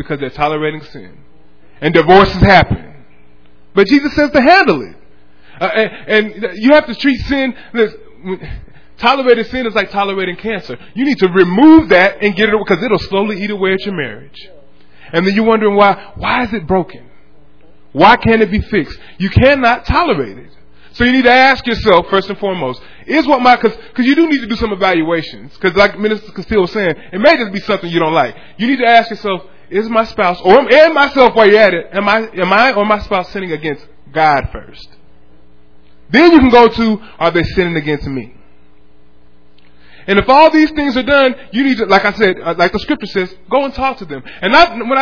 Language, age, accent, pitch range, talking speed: English, 20-39, American, 180-240 Hz, 210 wpm